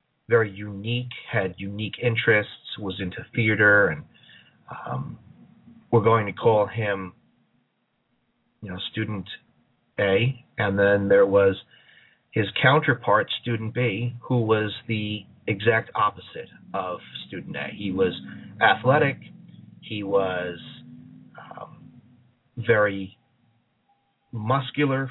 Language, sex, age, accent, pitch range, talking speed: English, male, 40-59, American, 105-130 Hz, 105 wpm